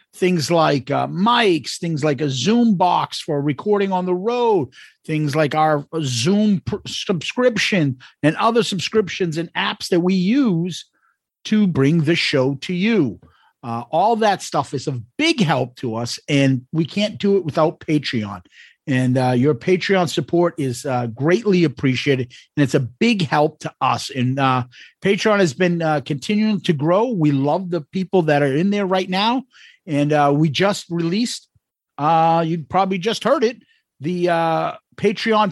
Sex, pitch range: male, 150-205 Hz